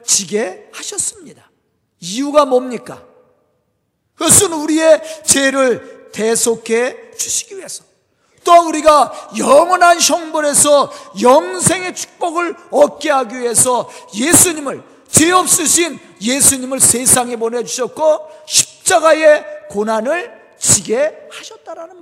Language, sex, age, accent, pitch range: Korean, male, 40-59, native, 235-315 Hz